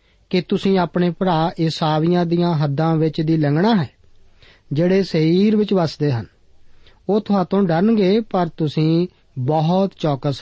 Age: 40-59